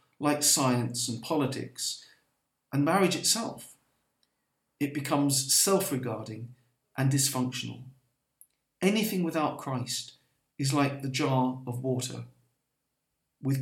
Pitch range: 125-150 Hz